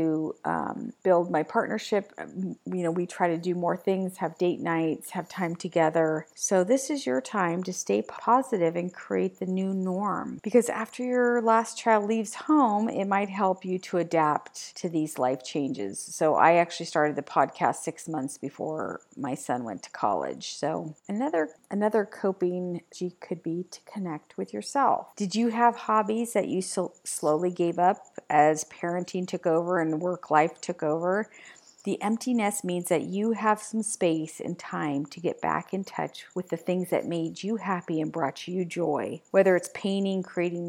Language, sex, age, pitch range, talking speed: English, female, 40-59, 165-200 Hz, 175 wpm